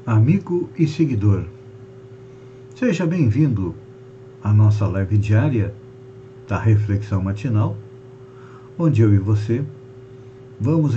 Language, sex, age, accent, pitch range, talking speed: Portuguese, male, 60-79, Brazilian, 100-130 Hz, 95 wpm